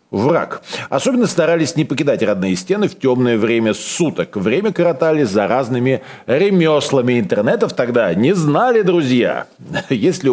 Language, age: Russian, 40-59